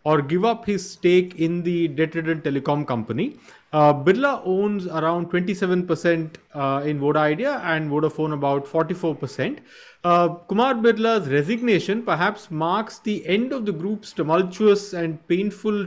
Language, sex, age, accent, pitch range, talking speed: English, male, 30-49, Indian, 155-200 Hz, 140 wpm